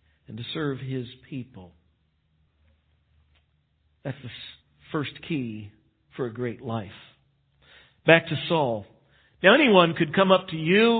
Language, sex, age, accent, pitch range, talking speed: English, male, 50-69, American, 140-195 Hz, 125 wpm